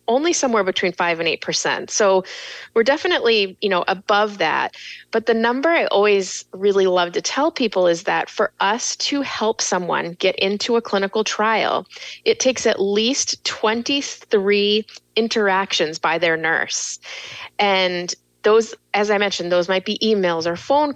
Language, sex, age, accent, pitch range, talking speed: English, female, 30-49, American, 185-235 Hz, 155 wpm